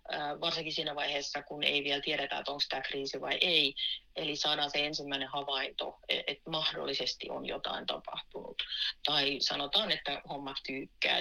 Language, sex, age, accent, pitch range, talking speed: Finnish, female, 30-49, native, 145-170 Hz, 150 wpm